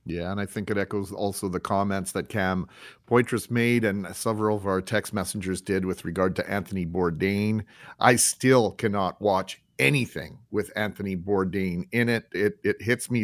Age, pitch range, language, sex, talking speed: 40-59, 100-120 Hz, English, male, 175 wpm